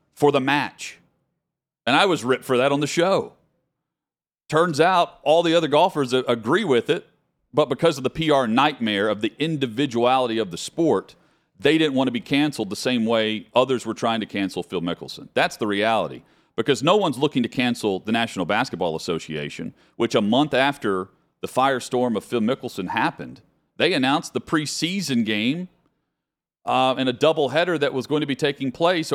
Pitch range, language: 115-150 Hz, English